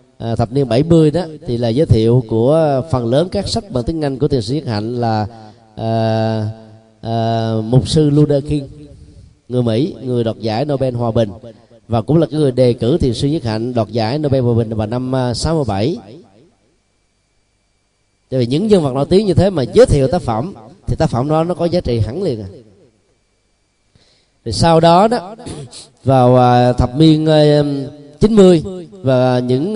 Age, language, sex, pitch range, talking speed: 20-39, Vietnamese, male, 115-155 Hz, 180 wpm